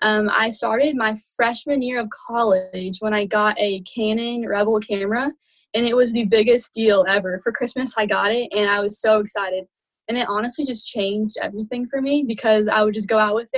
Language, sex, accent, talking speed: English, female, American, 210 wpm